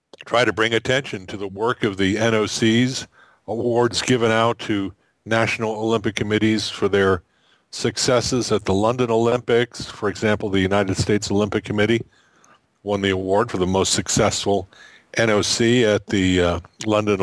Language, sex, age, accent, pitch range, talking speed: English, male, 50-69, American, 95-120 Hz, 150 wpm